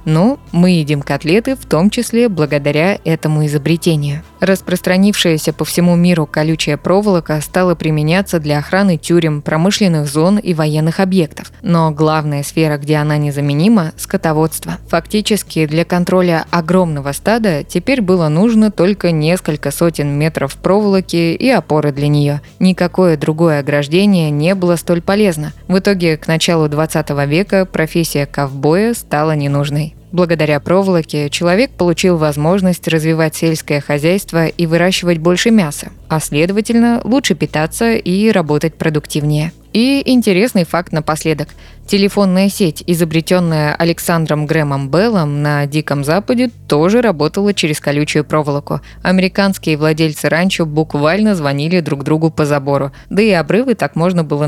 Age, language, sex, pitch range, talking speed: 20-39, Russian, female, 150-185 Hz, 130 wpm